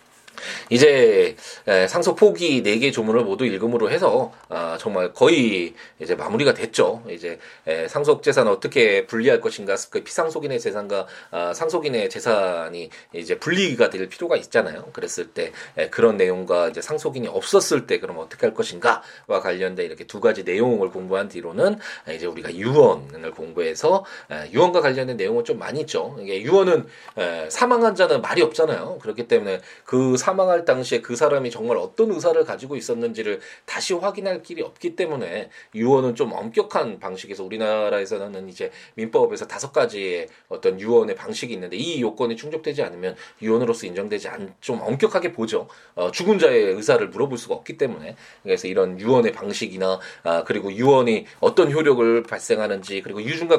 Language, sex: Korean, male